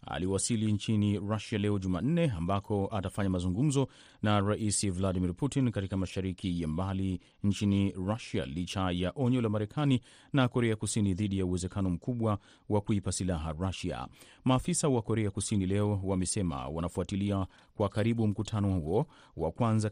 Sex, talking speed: male, 140 wpm